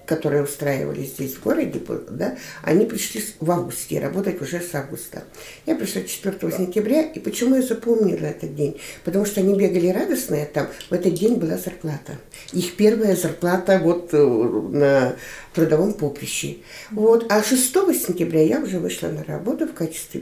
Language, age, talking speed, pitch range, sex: Russian, 50-69, 155 wpm, 155-215 Hz, female